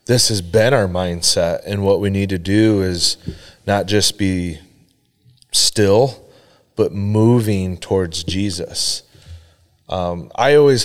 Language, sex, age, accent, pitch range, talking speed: English, male, 30-49, American, 90-110 Hz, 125 wpm